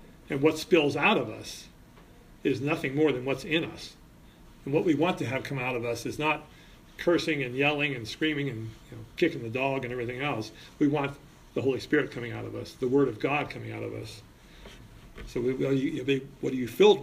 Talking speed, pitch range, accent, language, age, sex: 230 wpm, 135-165 Hz, American, English, 40-59, male